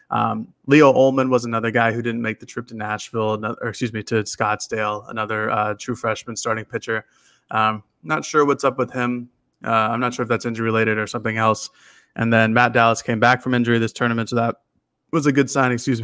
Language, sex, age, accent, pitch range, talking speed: English, male, 20-39, American, 110-120 Hz, 220 wpm